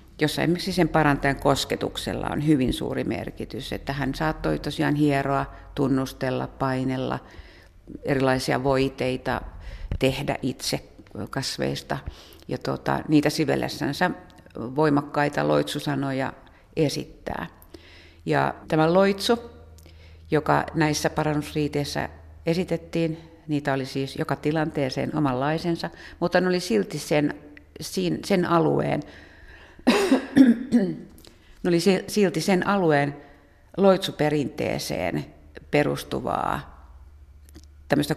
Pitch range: 130-165 Hz